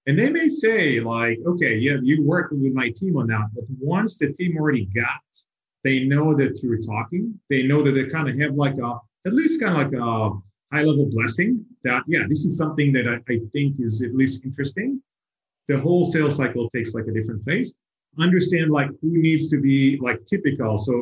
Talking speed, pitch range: 210 wpm, 120-150 Hz